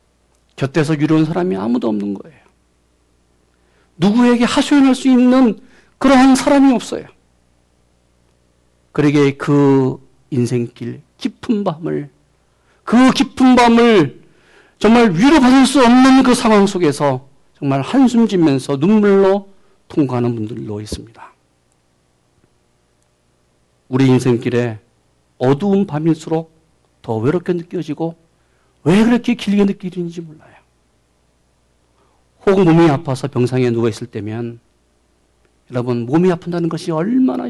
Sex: male